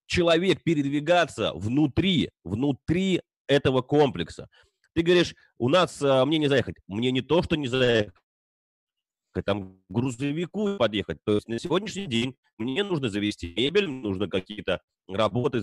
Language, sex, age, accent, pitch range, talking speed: Russian, male, 30-49, native, 115-170 Hz, 140 wpm